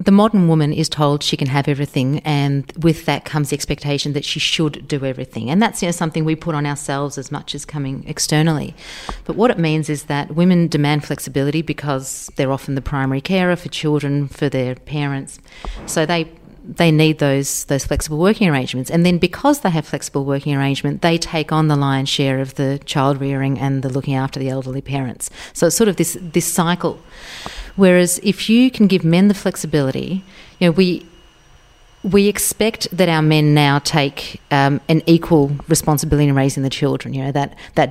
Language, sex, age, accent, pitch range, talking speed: English, female, 40-59, Australian, 140-170 Hz, 195 wpm